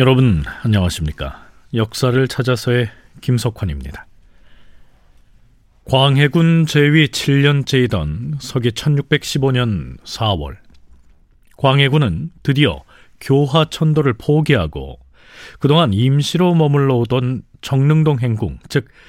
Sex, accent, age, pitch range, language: male, native, 40-59, 90-145 Hz, Korean